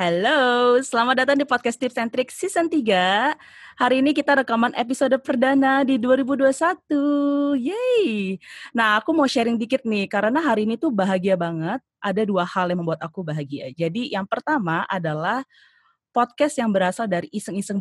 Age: 20-39